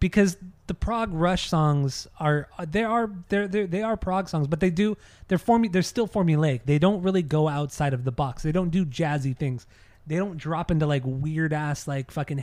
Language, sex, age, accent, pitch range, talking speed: English, male, 20-39, American, 140-175 Hz, 210 wpm